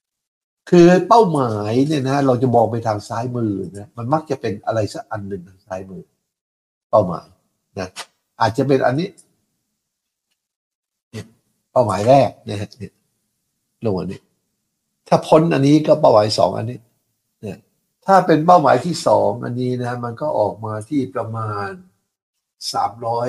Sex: male